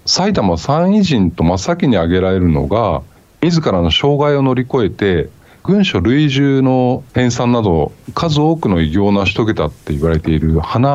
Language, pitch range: Japanese, 85-135 Hz